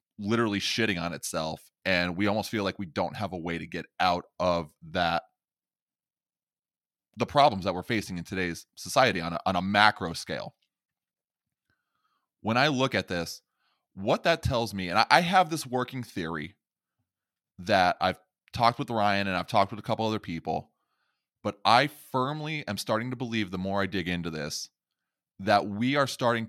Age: 20-39